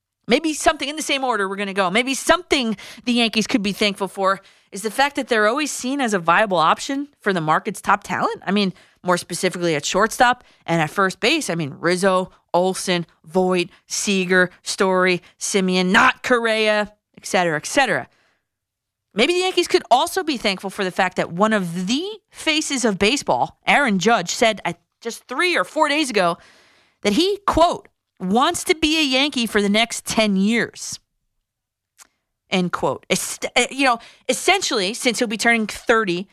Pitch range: 185-285 Hz